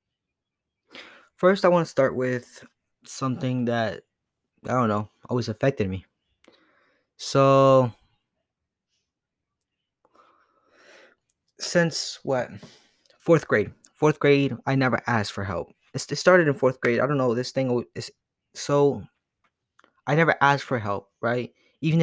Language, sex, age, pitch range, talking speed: English, male, 20-39, 115-140 Hz, 125 wpm